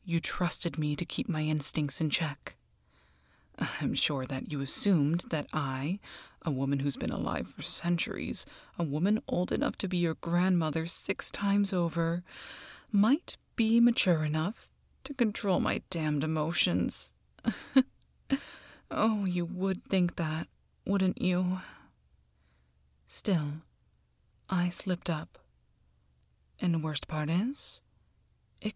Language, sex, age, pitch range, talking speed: English, female, 30-49, 140-180 Hz, 125 wpm